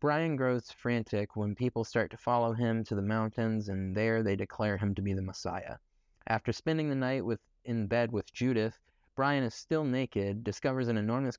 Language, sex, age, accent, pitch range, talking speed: English, male, 20-39, American, 100-120 Hz, 195 wpm